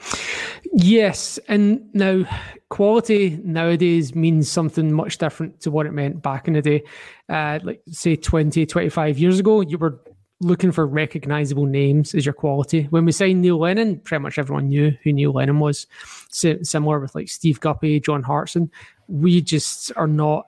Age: 20-39